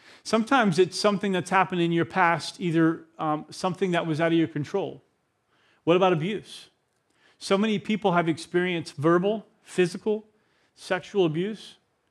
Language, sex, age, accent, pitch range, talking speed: English, male, 40-59, American, 165-200 Hz, 145 wpm